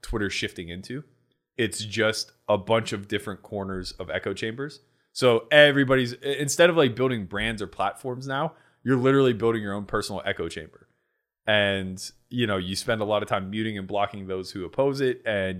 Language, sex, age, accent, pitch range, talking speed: English, male, 20-39, American, 95-135 Hz, 185 wpm